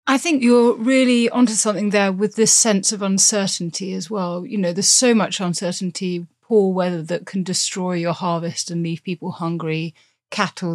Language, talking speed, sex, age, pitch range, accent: English, 180 wpm, female, 30-49, 165-195 Hz, British